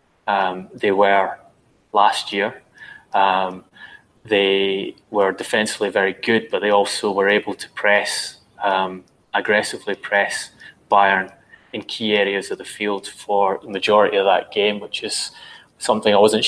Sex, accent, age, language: male, British, 20-39, English